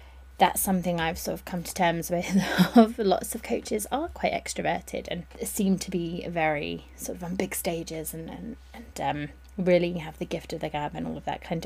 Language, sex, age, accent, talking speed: English, female, 20-39, British, 215 wpm